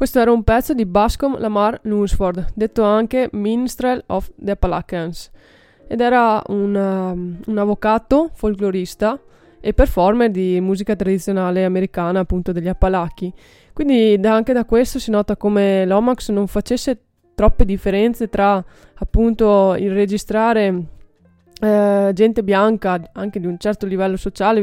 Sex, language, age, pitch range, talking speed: female, Italian, 20-39, 190-215 Hz, 135 wpm